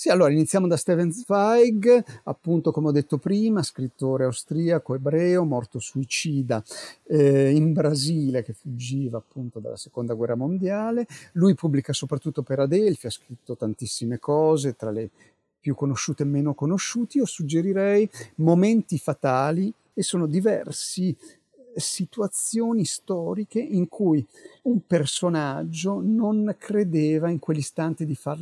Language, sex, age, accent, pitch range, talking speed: Italian, male, 40-59, native, 135-185 Hz, 130 wpm